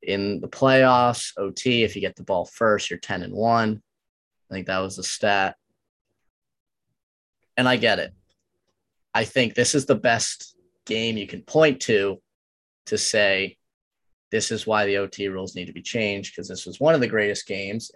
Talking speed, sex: 180 wpm, male